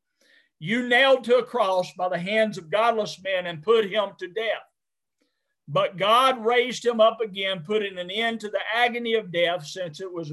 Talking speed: 190 wpm